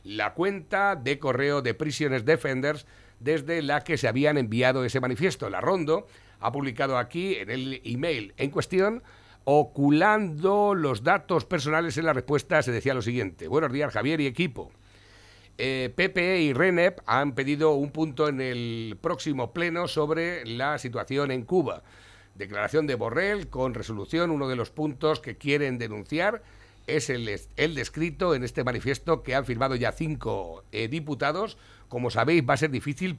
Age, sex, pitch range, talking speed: 60-79, male, 125-160 Hz, 165 wpm